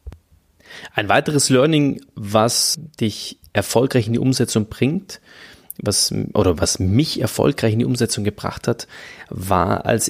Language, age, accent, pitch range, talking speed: German, 30-49, German, 100-120 Hz, 130 wpm